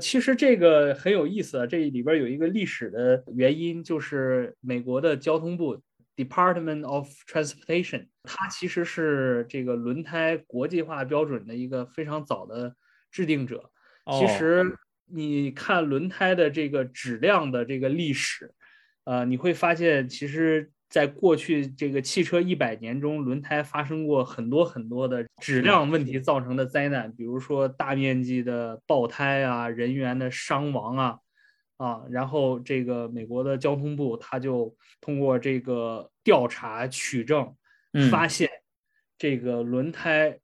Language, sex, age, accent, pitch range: Chinese, male, 20-39, native, 125-160 Hz